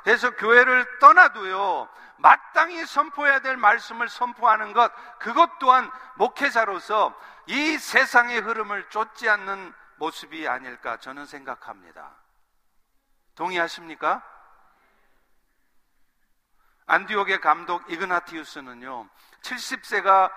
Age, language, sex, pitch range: 50-69, Korean, male, 175-245 Hz